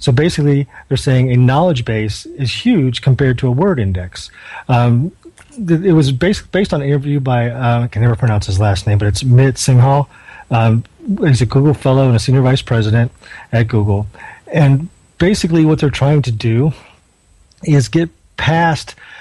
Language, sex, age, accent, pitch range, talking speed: English, male, 40-59, American, 115-150 Hz, 185 wpm